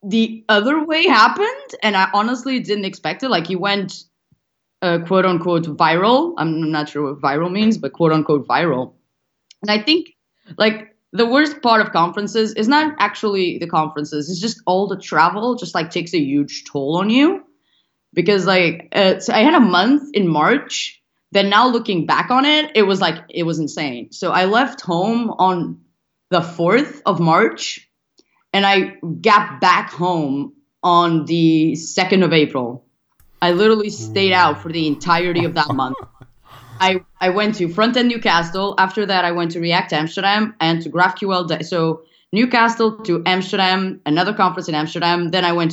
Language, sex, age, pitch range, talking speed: Bulgarian, female, 20-39, 165-220 Hz, 175 wpm